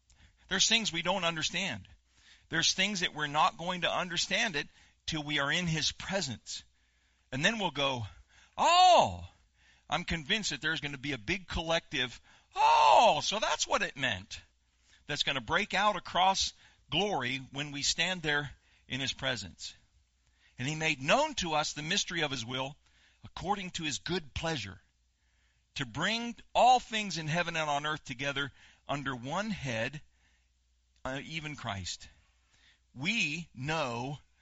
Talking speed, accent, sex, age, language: 155 wpm, American, male, 50-69, English